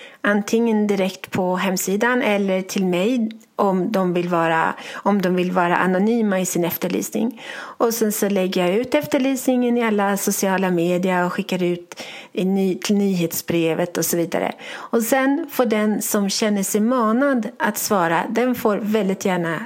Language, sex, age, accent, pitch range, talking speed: Swedish, female, 40-59, native, 190-250 Hz, 150 wpm